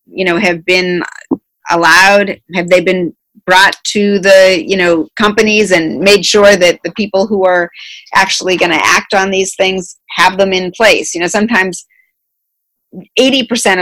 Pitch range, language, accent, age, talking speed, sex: 175-200 Hz, English, American, 40-59, 160 wpm, female